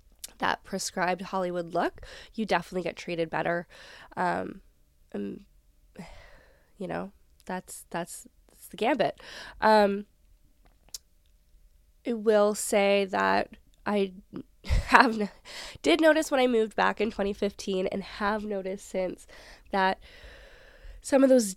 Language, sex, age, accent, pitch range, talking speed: English, female, 10-29, American, 175-205 Hz, 115 wpm